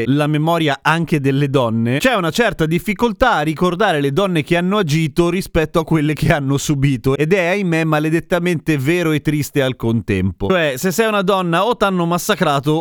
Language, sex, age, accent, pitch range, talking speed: Italian, male, 30-49, native, 130-175 Hz, 185 wpm